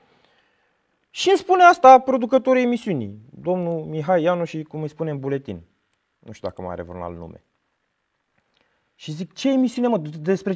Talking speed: 165 wpm